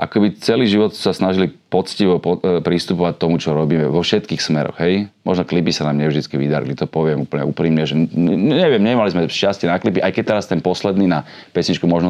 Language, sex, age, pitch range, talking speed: Slovak, male, 40-59, 80-95 Hz, 195 wpm